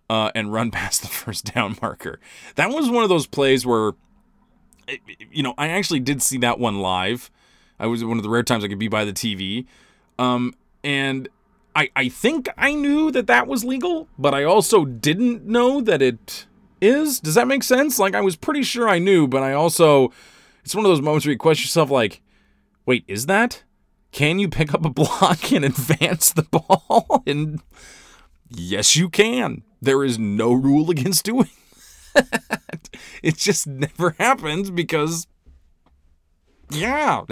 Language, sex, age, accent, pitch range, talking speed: English, male, 20-39, American, 120-195 Hz, 175 wpm